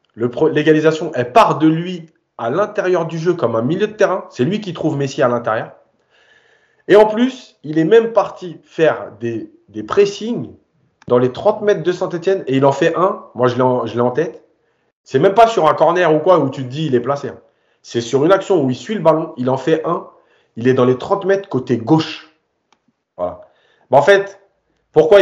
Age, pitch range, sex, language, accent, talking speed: 30-49, 125-175 Hz, male, French, French, 225 wpm